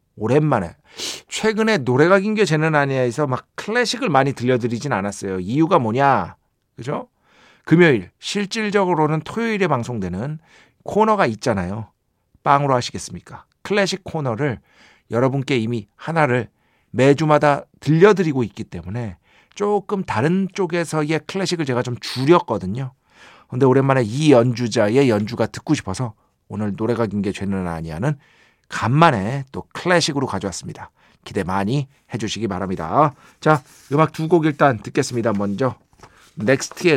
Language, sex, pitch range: Korean, male, 110-155 Hz